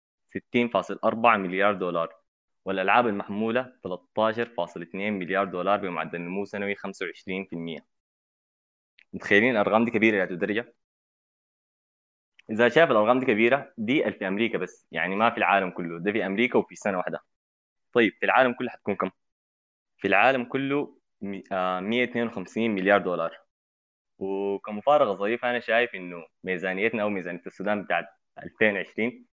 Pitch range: 90-110 Hz